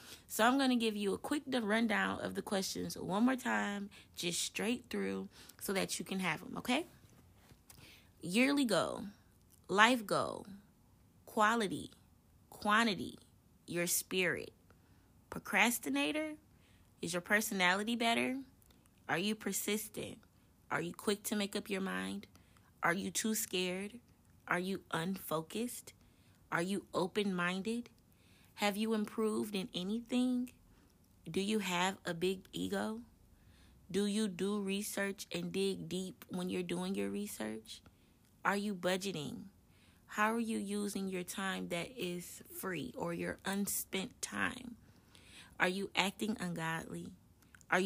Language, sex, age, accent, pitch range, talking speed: English, female, 20-39, American, 160-215 Hz, 130 wpm